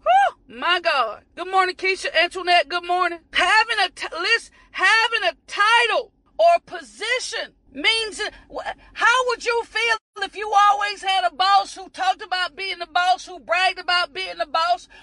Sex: female